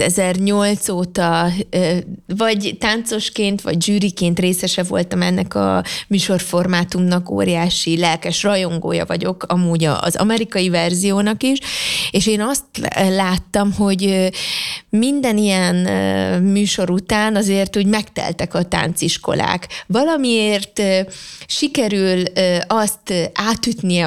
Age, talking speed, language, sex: 20-39, 95 wpm, Hungarian, female